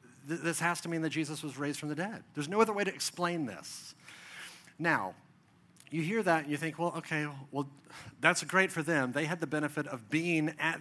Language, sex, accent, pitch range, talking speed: English, male, American, 145-180 Hz, 215 wpm